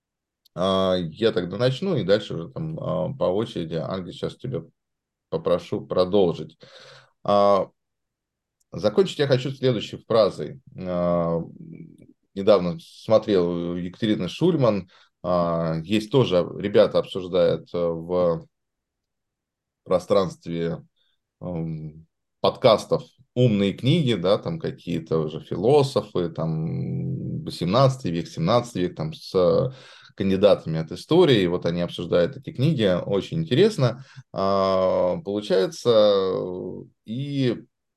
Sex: male